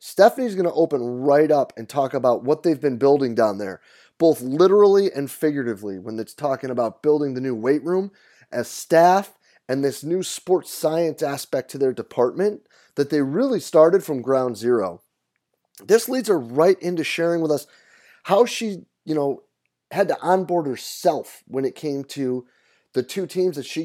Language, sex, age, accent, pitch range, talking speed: English, male, 30-49, American, 140-190 Hz, 180 wpm